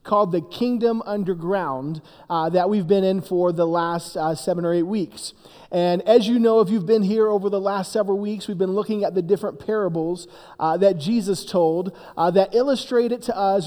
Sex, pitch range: male, 175-215 Hz